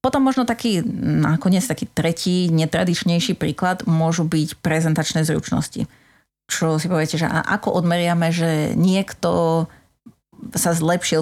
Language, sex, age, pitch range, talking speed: Slovak, female, 30-49, 155-175 Hz, 120 wpm